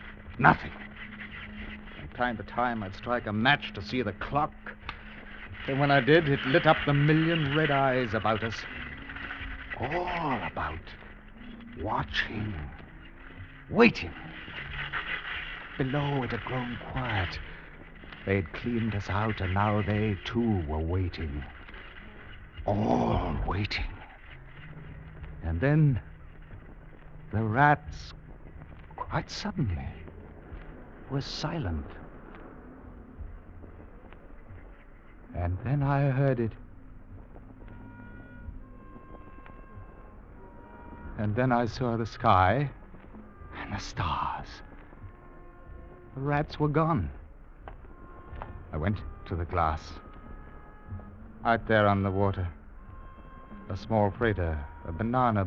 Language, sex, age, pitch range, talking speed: English, male, 60-79, 85-115 Hz, 95 wpm